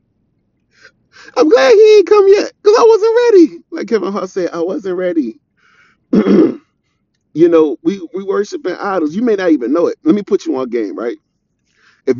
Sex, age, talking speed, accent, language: male, 30-49, 180 wpm, American, English